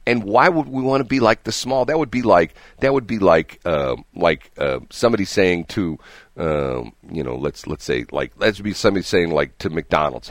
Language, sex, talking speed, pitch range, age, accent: English, male, 220 wpm, 100-135 Hz, 50-69, American